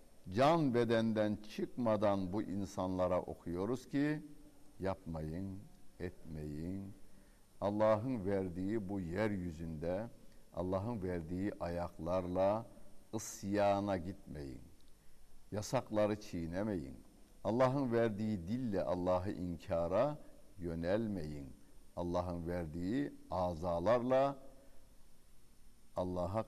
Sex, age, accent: male, 60-79, native